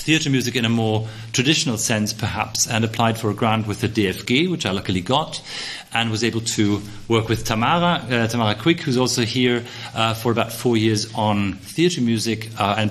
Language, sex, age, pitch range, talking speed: English, male, 40-59, 110-130 Hz, 200 wpm